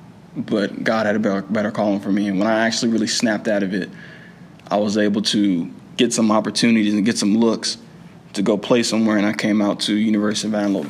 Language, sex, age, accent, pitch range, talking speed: English, male, 20-39, American, 105-115 Hz, 225 wpm